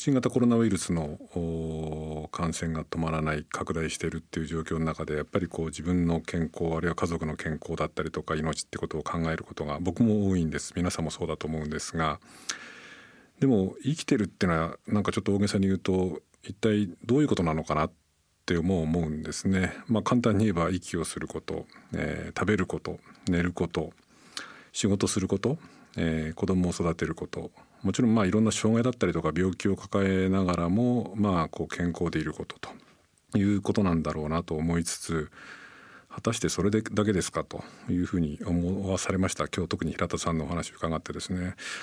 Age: 50-69